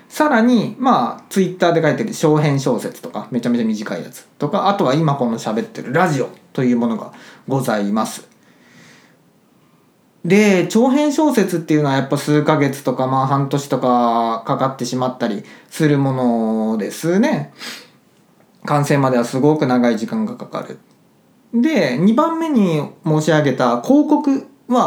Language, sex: Japanese, male